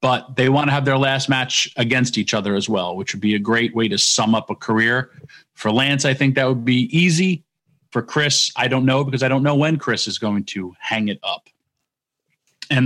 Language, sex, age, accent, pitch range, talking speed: English, male, 40-59, American, 115-145 Hz, 235 wpm